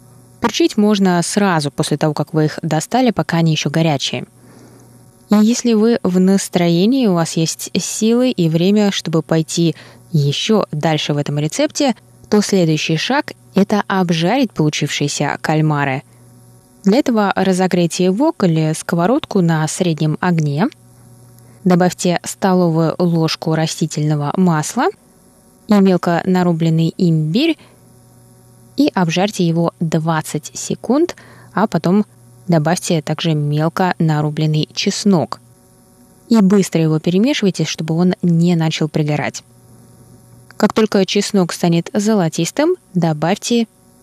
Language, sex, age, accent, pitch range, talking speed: Russian, female, 20-39, native, 155-200 Hz, 115 wpm